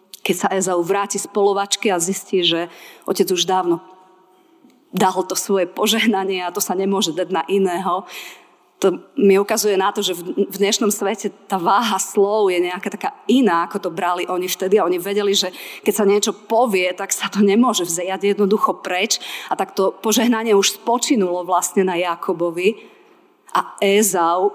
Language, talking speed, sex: Slovak, 170 wpm, female